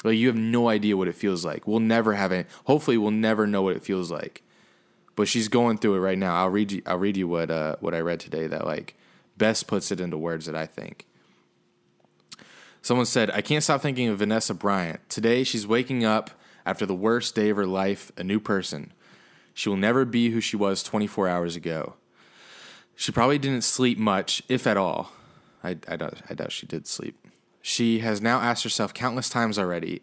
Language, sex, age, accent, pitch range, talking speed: English, male, 20-39, American, 95-115 Hz, 215 wpm